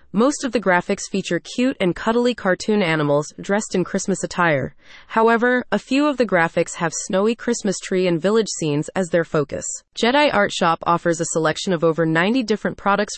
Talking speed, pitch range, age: 185 wpm, 170-225 Hz, 30-49